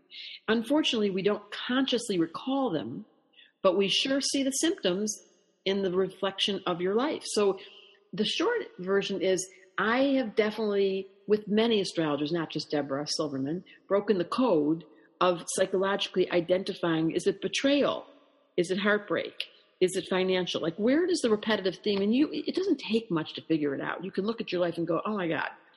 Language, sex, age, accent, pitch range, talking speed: English, female, 50-69, American, 170-225 Hz, 175 wpm